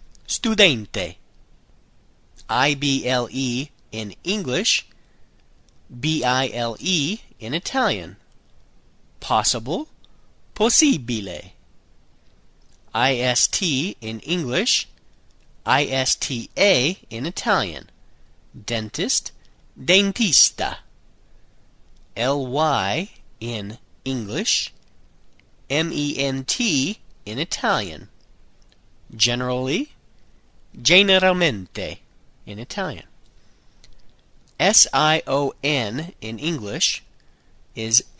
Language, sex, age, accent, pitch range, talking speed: Italian, male, 30-49, American, 110-165 Hz, 55 wpm